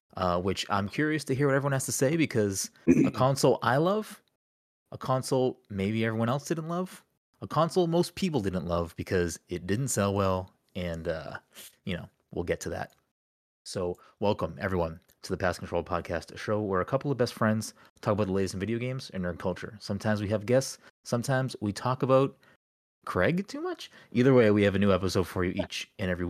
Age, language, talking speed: 20-39, English, 210 wpm